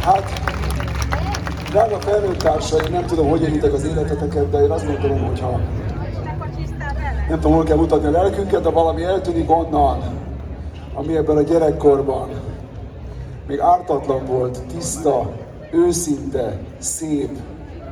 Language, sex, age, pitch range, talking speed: Hungarian, male, 30-49, 110-150 Hz, 120 wpm